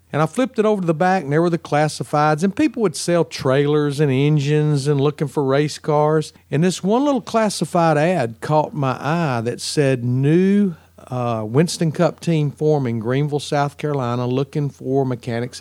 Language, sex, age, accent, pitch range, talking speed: English, male, 50-69, American, 125-165 Hz, 185 wpm